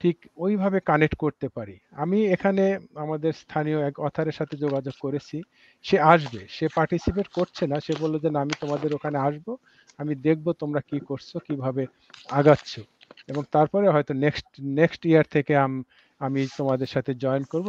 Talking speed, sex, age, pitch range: 160 wpm, male, 50-69, 135-170 Hz